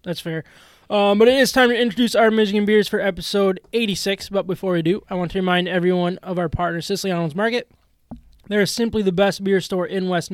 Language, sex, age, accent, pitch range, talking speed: English, male, 20-39, American, 175-195 Hz, 220 wpm